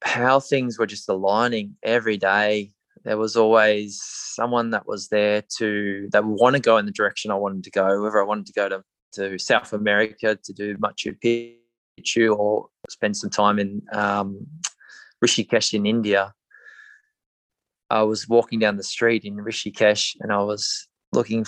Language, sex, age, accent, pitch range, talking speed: English, male, 20-39, Australian, 100-110 Hz, 170 wpm